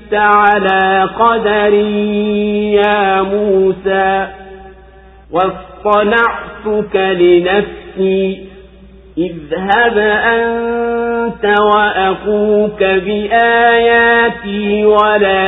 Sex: male